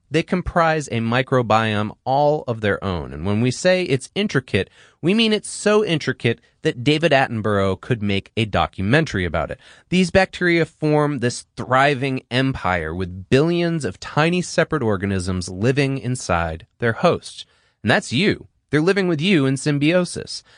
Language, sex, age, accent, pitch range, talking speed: English, male, 30-49, American, 105-160 Hz, 155 wpm